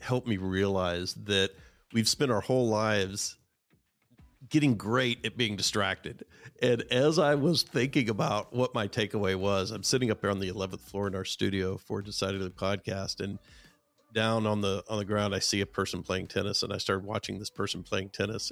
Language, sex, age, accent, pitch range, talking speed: English, male, 50-69, American, 95-120 Hz, 190 wpm